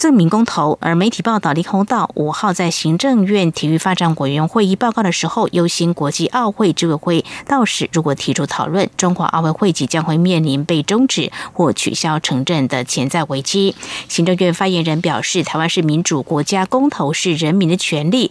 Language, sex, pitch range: Chinese, female, 155-200 Hz